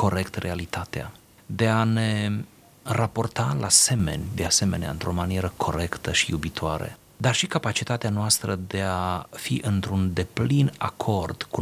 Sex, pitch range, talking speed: male, 100-125 Hz, 135 wpm